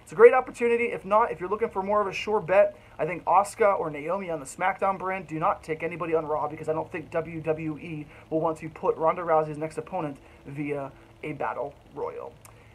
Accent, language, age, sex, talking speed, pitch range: American, English, 20-39, male, 220 wpm, 155-195 Hz